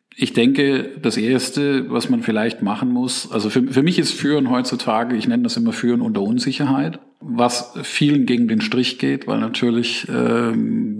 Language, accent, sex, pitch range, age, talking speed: German, German, male, 110-145 Hz, 50-69, 175 wpm